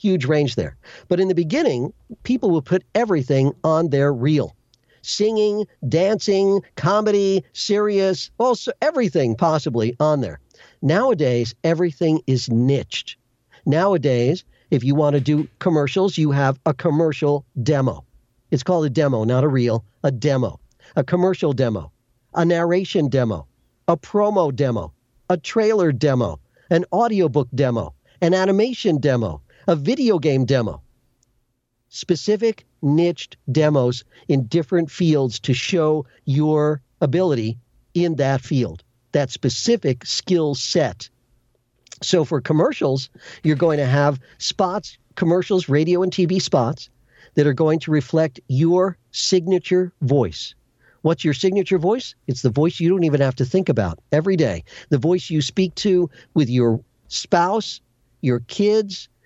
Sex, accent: male, American